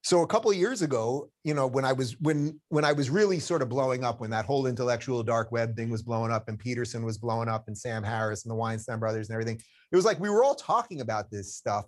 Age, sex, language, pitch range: 30-49, male, English, 110-145 Hz